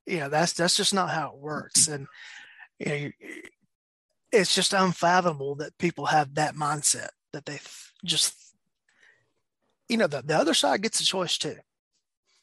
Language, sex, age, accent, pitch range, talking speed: English, male, 30-49, American, 145-175 Hz, 160 wpm